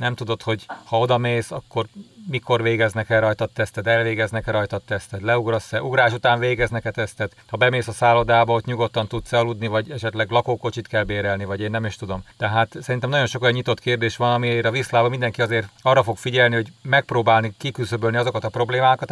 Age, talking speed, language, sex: 40-59, 180 wpm, Hungarian, male